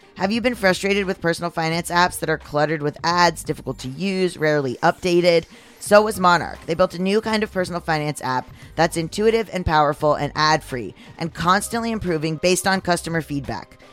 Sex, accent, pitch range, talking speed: female, American, 150-190 Hz, 185 wpm